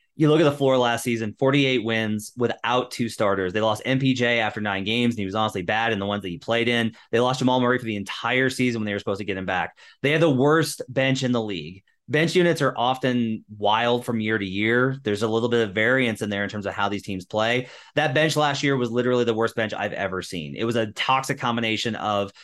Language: English